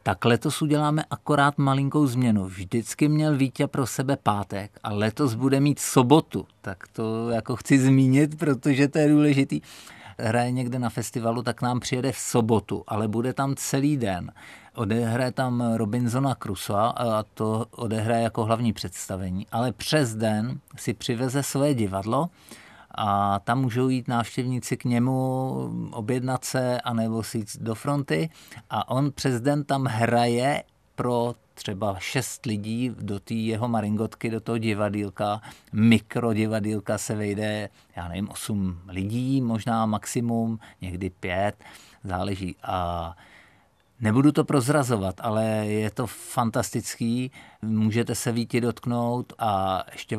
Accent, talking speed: native, 135 wpm